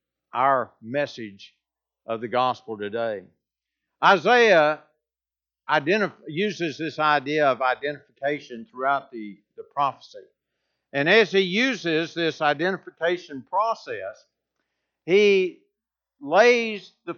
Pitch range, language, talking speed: 150-215 Hz, English, 90 wpm